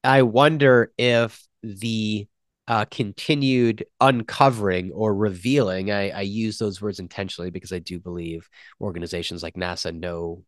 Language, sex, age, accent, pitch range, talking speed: English, male, 30-49, American, 95-120 Hz, 130 wpm